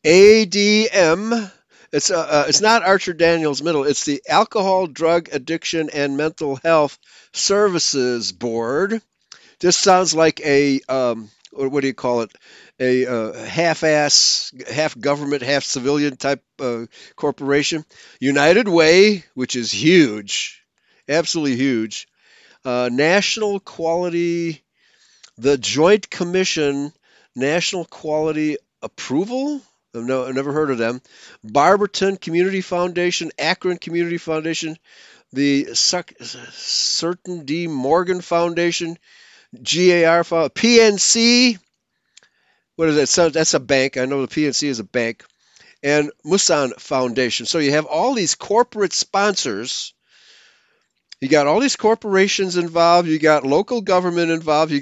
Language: English